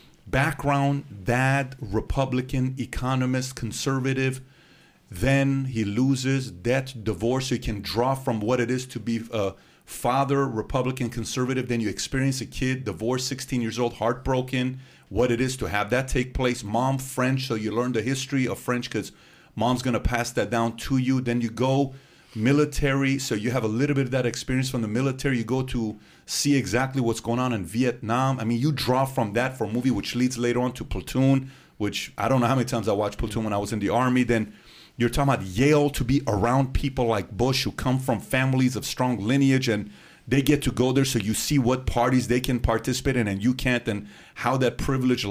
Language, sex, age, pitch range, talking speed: English, male, 40-59, 115-135 Hz, 210 wpm